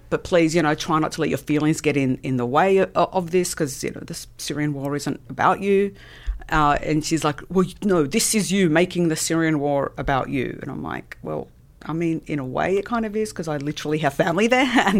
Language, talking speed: English, 255 wpm